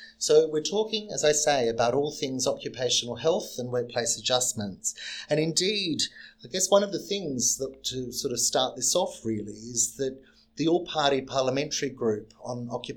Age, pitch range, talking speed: 30-49, 115-135 Hz, 165 wpm